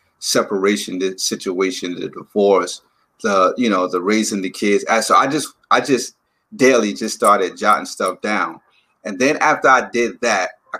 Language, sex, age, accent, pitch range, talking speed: English, male, 30-49, American, 105-130 Hz, 165 wpm